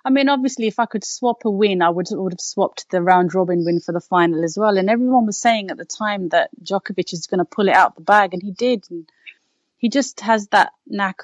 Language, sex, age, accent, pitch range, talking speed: English, female, 30-49, British, 165-215 Hz, 260 wpm